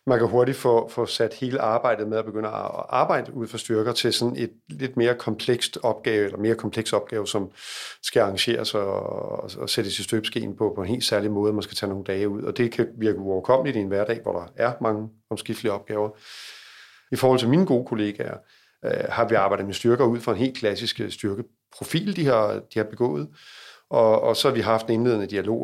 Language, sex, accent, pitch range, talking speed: Danish, male, native, 110-130 Hz, 220 wpm